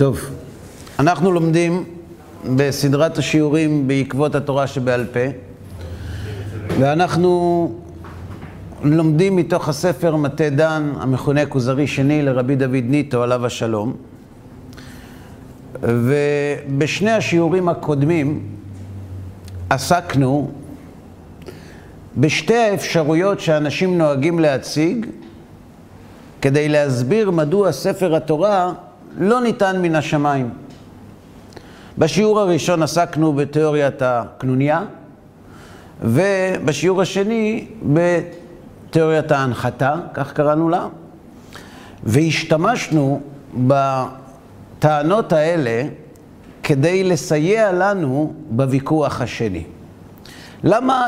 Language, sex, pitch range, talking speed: Hebrew, male, 125-165 Hz, 75 wpm